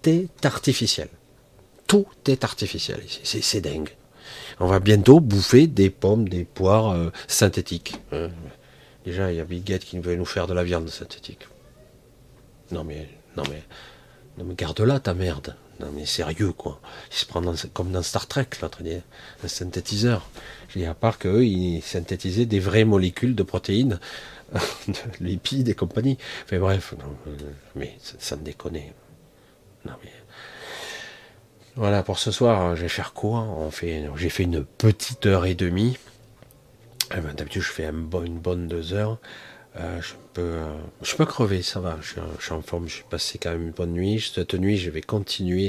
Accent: French